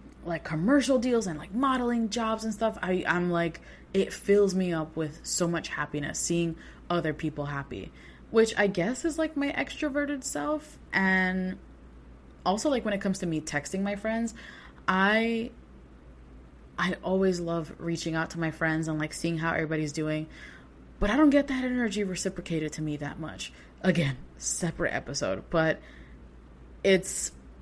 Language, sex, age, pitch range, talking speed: English, female, 20-39, 155-205 Hz, 160 wpm